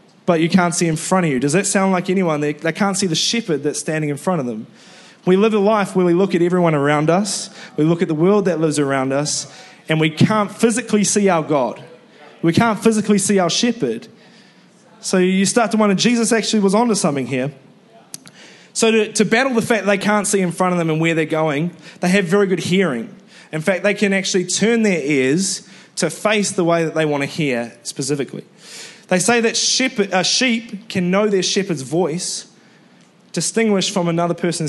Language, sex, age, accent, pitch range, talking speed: English, male, 20-39, Australian, 160-210 Hz, 215 wpm